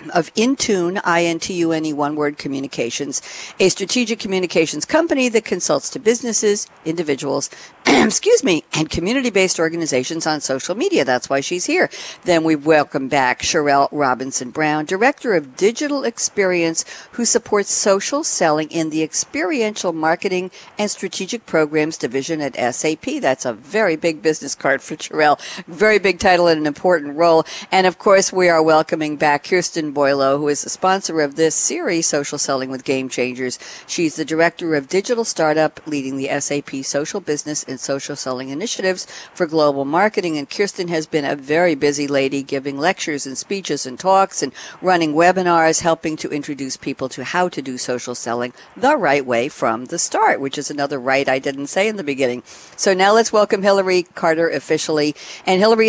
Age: 60-79